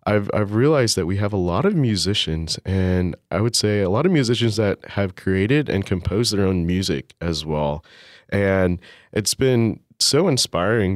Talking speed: 180 wpm